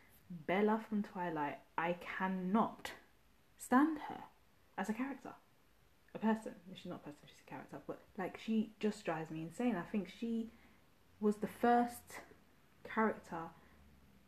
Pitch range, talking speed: 160-210 Hz, 140 wpm